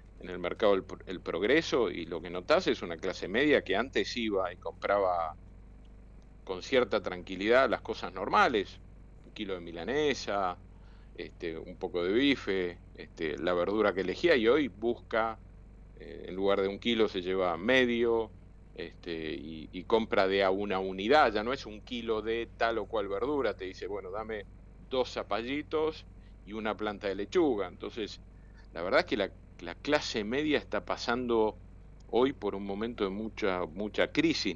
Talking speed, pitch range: 170 wpm, 95-115 Hz